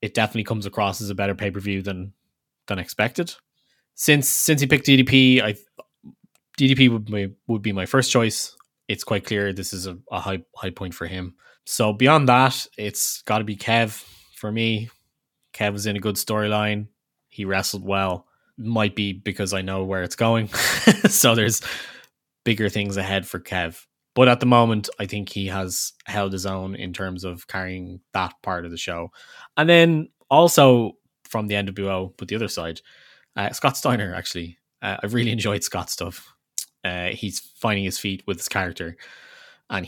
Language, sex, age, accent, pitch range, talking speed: English, male, 20-39, Irish, 95-115 Hz, 180 wpm